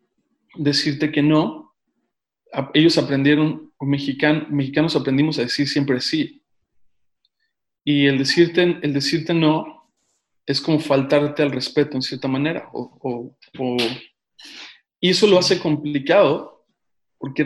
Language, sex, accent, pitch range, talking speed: Spanish, male, Mexican, 140-160 Hz, 125 wpm